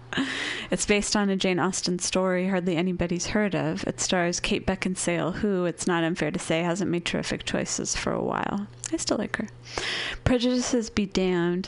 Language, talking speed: English, 180 wpm